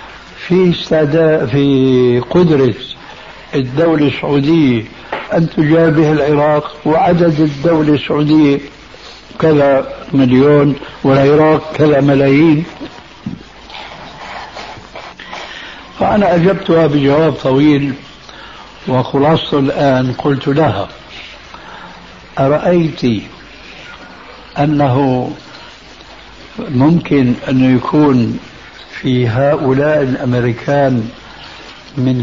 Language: Arabic